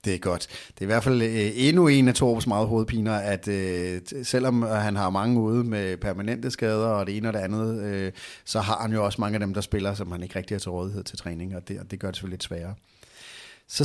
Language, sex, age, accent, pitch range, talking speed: Danish, male, 30-49, native, 100-120 Hz, 245 wpm